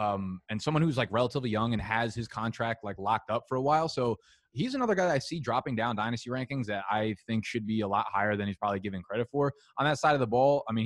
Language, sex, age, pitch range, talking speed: English, male, 20-39, 105-130 Hz, 270 wpm